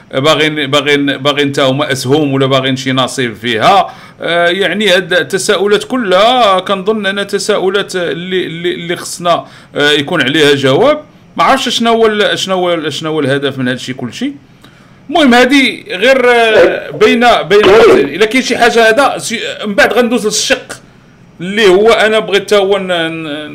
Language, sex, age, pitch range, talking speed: Arabic, male, 50-69, 145-230 Hz, 155 wpm